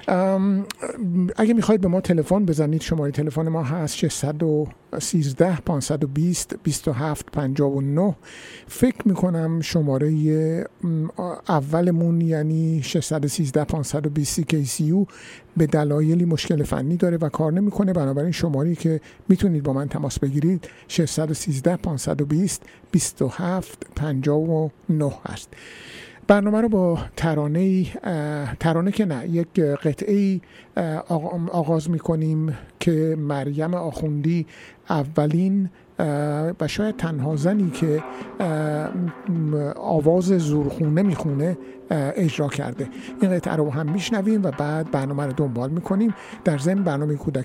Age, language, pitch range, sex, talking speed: 50-69, Persian, 150-180 Hz, male, 95 wpm